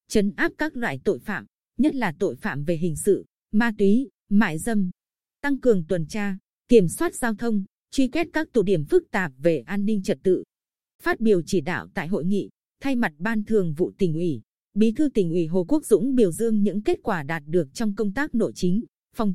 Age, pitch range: 20-39, 185-235 Hz